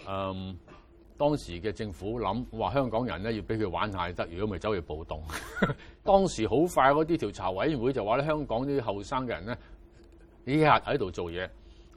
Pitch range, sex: 90-125 Hz, male